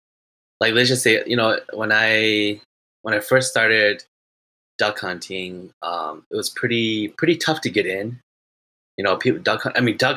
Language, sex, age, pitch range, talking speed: English, male, 10-29, 90-120 Hz, 175 wpm